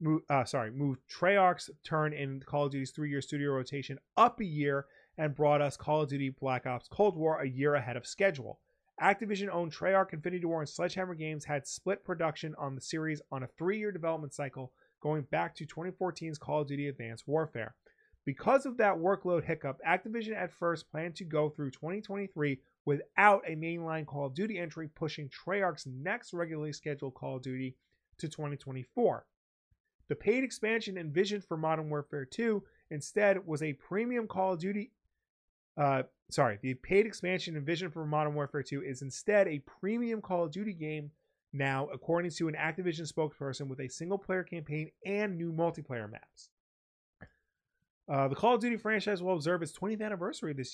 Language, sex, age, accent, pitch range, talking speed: English, male, 30-49, American, 140-185 Hz, 175 wpm